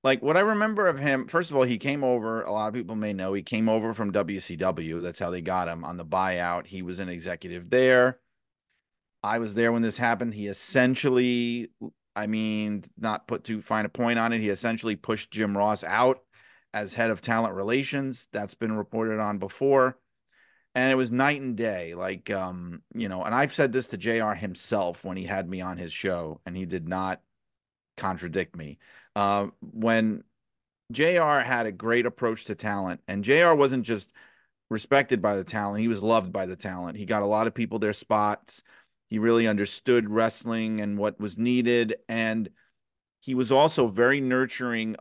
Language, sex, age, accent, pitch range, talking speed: English, male, 30-49, American, 100-120 Hz, 195 wpm